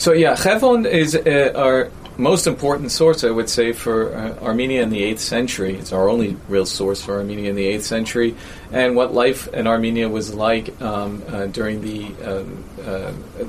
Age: 40-59